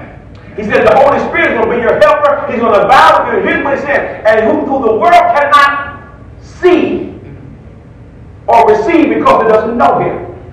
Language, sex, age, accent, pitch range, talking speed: English, male, 40-59, American, 180-295 Hz, 175 wpm